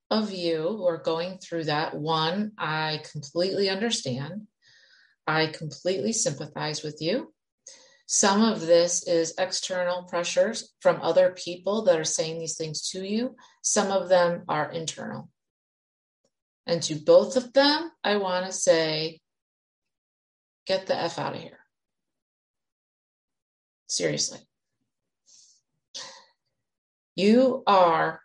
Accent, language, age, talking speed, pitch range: American, English, 30-49, 115 wpm, 165-195 Hz